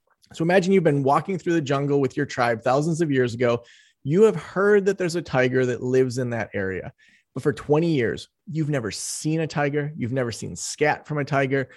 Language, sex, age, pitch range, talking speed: English, male, 30-49, 135-185 Hz, 220 wpm